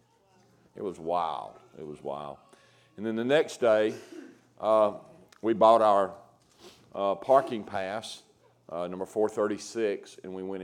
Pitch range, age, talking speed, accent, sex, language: 90-110 Hz, 50-69, 135 wpm, American, male, English